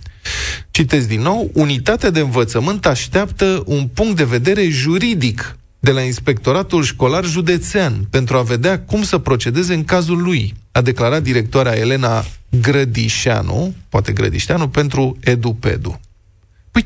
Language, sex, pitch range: Romanian, male, 110-155 Hz